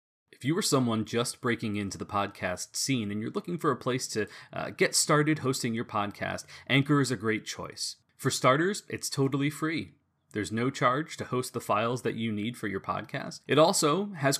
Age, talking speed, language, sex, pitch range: 30-49, 205 wpm, English, male, 110-140 Hz